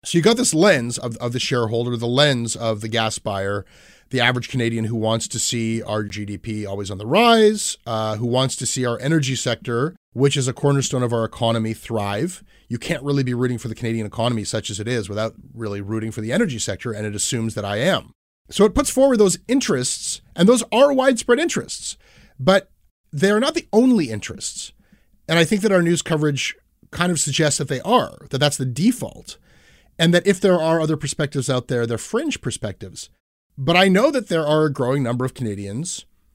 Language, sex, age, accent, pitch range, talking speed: English, male, 30-49, American, 115-160 Hz, 210 wpm